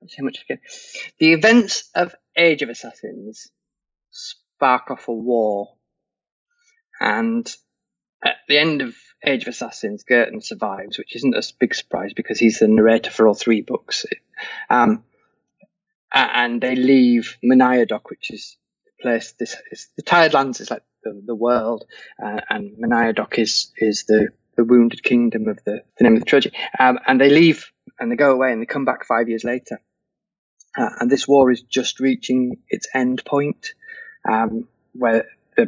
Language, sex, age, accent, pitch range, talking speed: English, male, 20-39, British, 125-200 Hz, 165 wpm